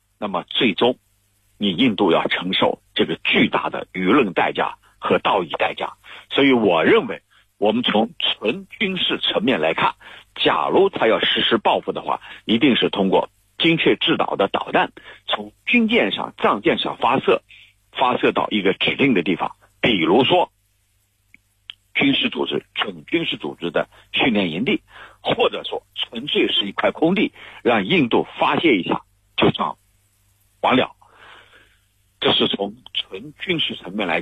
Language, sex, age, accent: Chinese, male, 50-69, native